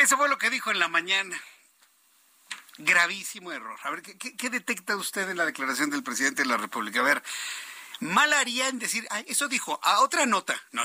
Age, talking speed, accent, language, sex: 50-69, 205 wpm, Mexican, Spanish, male